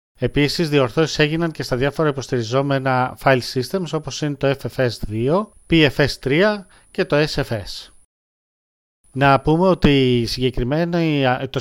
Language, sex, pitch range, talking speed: Greek, male, 130-165 Hz, 115 wpm